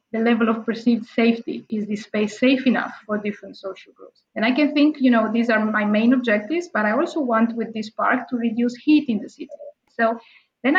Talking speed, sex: 215 wpm, female